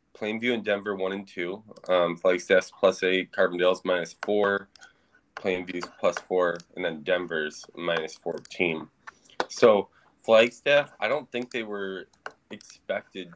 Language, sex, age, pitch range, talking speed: English, male, 20-39, 90-110 Hz, 130 wpm